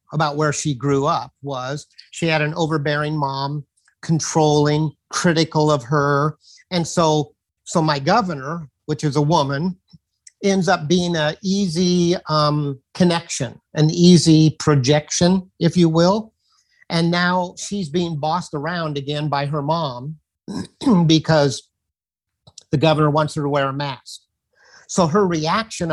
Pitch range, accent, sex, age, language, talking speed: 150-185 Hz, American, male, 50-69, English, 135 wpm